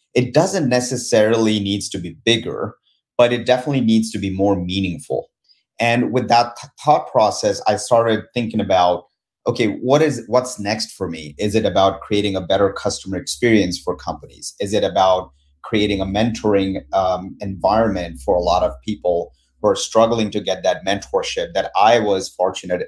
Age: 30-49